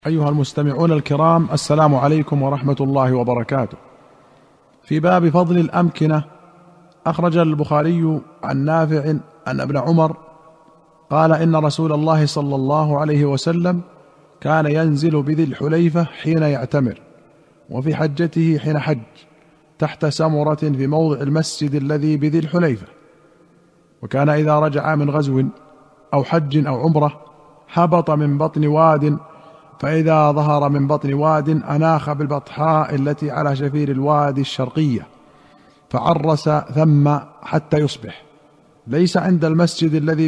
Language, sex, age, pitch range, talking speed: Arabic, male, 50-69, 145-160 Hz, 115 wpm